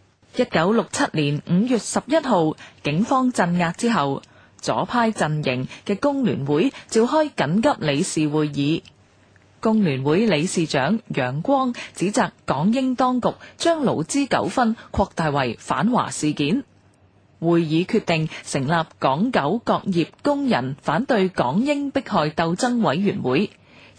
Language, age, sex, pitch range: Chinese, 30-49, female, 155-235 Hz